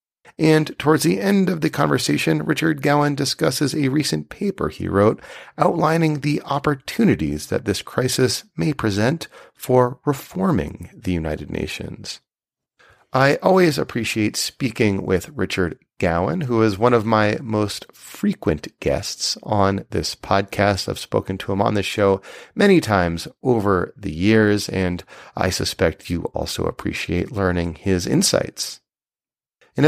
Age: 40-59